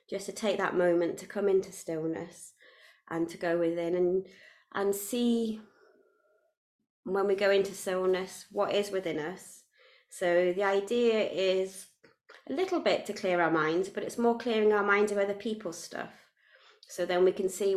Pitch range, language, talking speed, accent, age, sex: 185-230 Hz, English, 170 wpm, British, 30-49, female